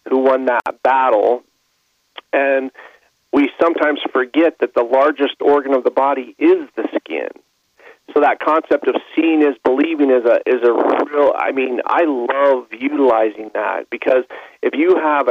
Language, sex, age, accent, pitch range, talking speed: English, male, 40-59, American, 125-165 Hz, 155 wpm